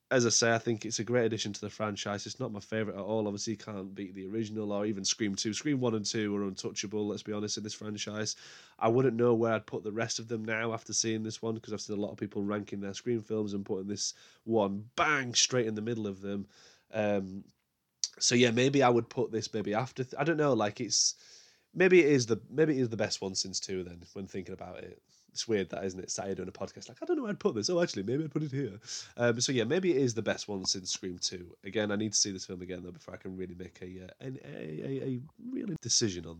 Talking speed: 280 wpm